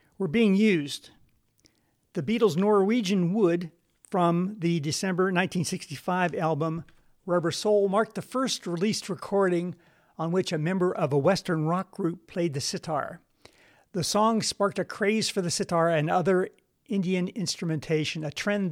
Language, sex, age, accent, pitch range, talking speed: English, male, 50-69, American, 160-200 Hz, 145 wpm